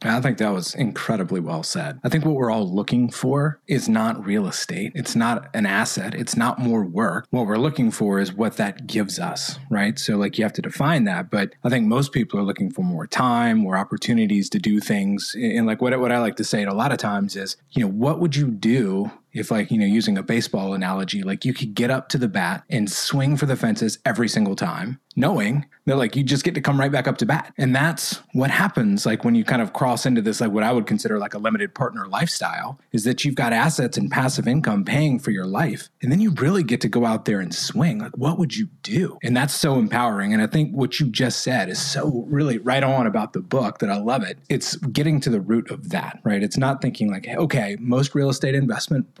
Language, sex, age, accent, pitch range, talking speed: English, male, 20-39, American, 115-170 Hz, 250 wpm